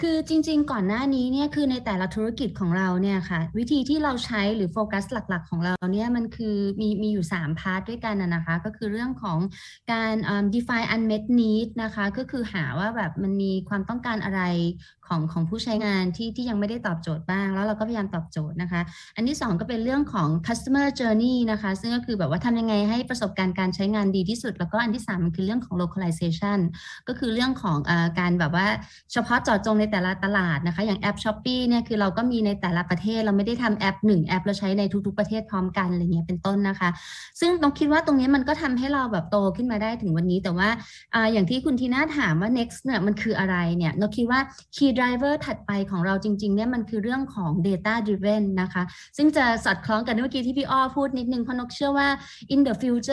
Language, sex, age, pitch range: Thai, female, 20-39, 190-245 Hz